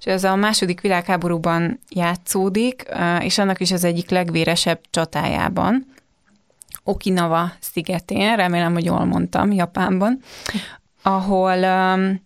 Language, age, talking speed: Hungarian, 20-39, 100 wpm